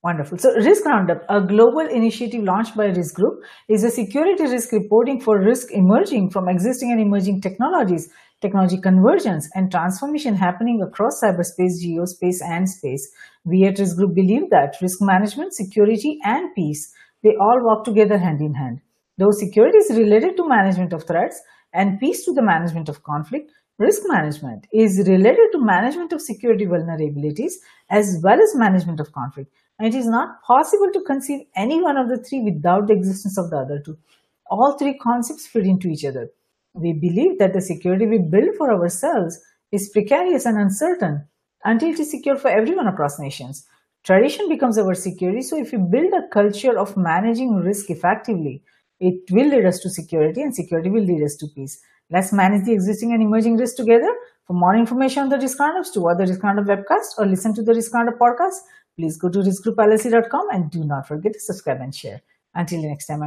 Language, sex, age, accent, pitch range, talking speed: English, female, 50-69, Indian, 180-245 Hz, 190 wpm